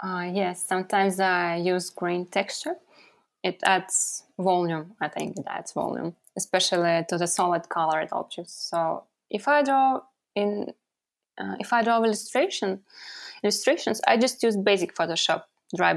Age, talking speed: 20-39, 145 wpm